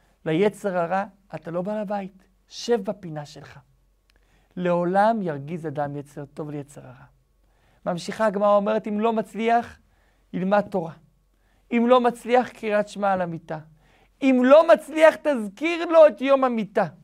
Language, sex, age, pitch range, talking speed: Hebrew, male, 50-69, 175-245 Hz, 135 wpm